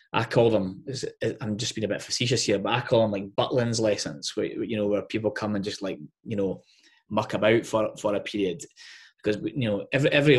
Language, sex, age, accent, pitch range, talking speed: English, male, 20-39, British, 100-110 Hz, 225 wpm